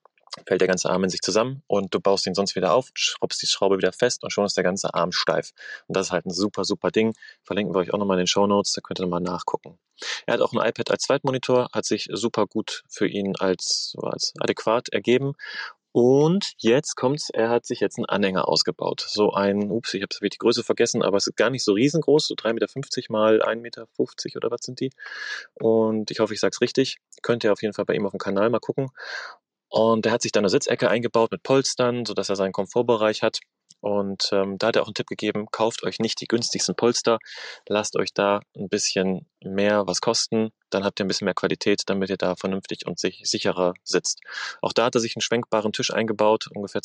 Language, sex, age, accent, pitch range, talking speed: German, male, 30-49, German, 100-120 Hz, 235 wpm